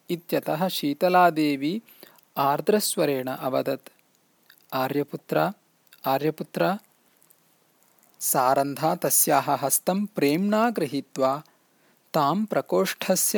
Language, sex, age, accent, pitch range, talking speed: English, male, 40-59, Indian, 140-195 Hz, 65 wpm